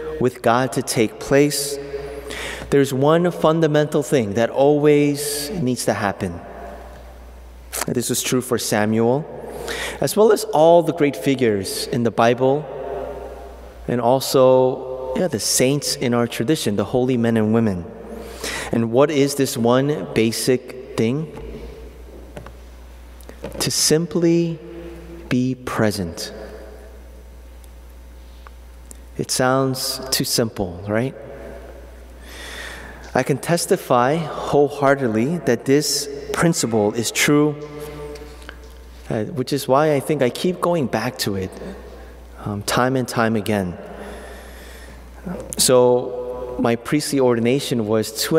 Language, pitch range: English, 105-145 Hz